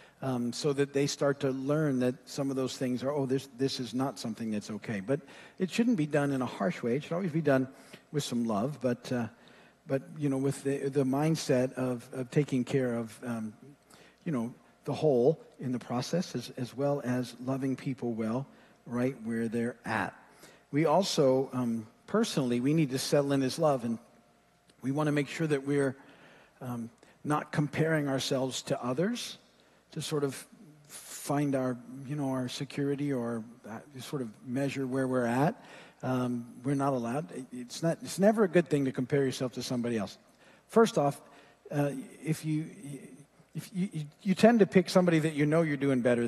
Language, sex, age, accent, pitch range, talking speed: English, male, 50-69, American, 130-160 Hz, 195 wpm